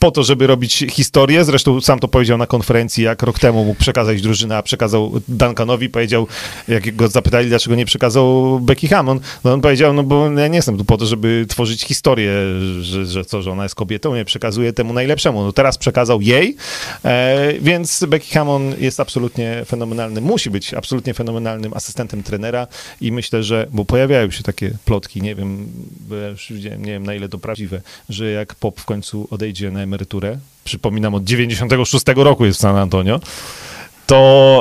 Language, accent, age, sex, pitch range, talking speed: Polish, native, 40-59, male, 100-125 Hz, 175 wpm